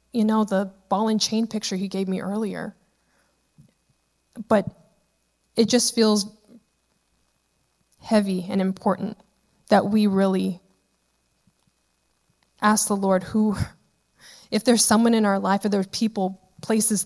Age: 20-39